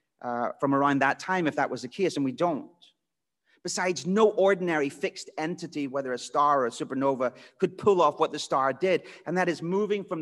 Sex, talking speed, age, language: male, 210 wpm, 40-59, English